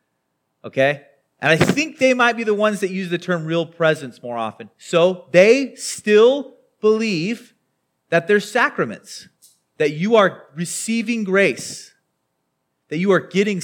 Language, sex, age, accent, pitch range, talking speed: English, male, 30-49, American, 135-210 Hz, 145 wpm